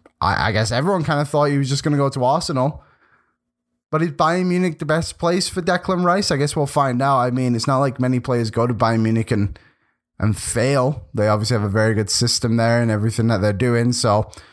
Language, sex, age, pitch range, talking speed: English, male, 10-29, 110-145 Hz, 235 wpm